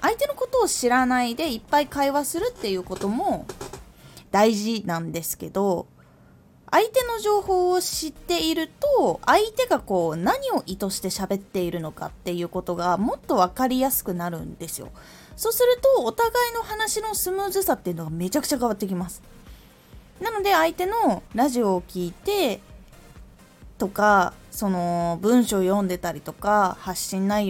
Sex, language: female, Japanese